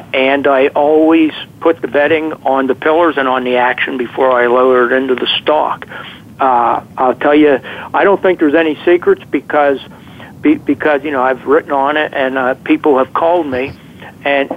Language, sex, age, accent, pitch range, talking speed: English, male, 60-79, American, 130-155 Hz, 185 wpm